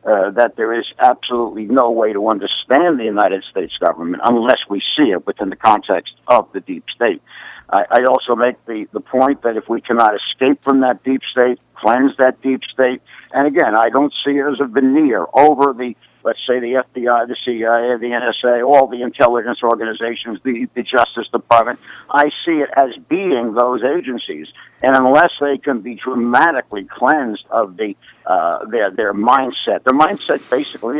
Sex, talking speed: male, 180 wpm